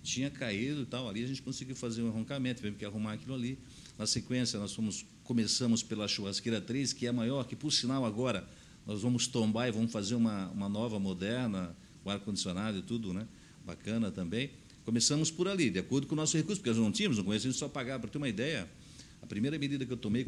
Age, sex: 60-79, male